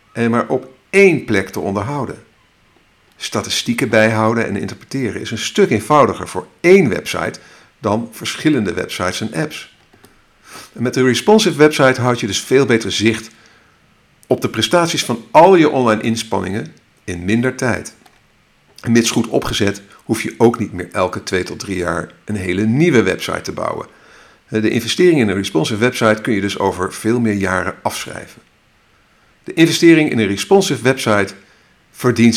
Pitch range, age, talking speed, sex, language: 100-130 Hz, 50-69, 155 wpm, male, Dutch